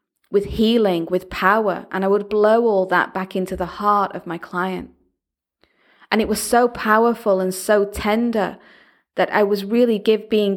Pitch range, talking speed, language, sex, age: 190-225 Hz, 170 wpm, English, female, 30-49